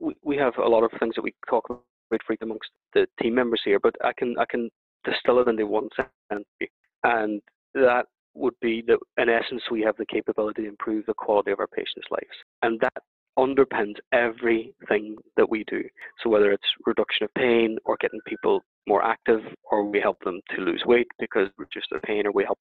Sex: male